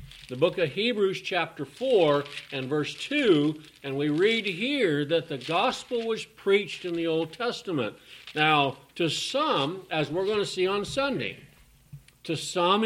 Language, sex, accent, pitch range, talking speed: English, male, American, 145-200 Hz, 160 wpm